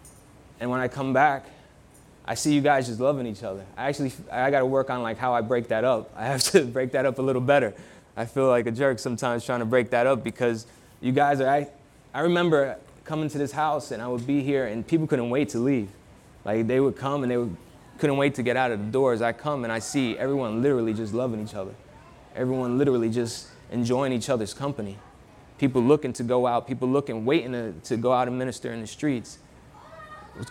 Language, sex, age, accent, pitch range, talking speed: English, male, 20-39, American, 120-140 Hz, 230 wpm